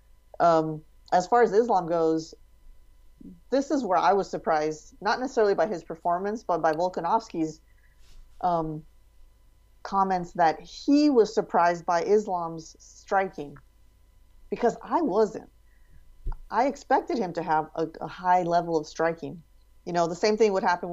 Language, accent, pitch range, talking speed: English, American, 150-180 Hz, 145 wpm